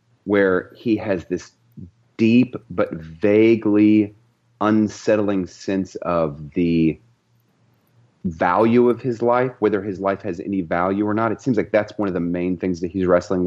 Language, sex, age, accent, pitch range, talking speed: English, male, 30-49, American, 90-120 Hz, 155 wpm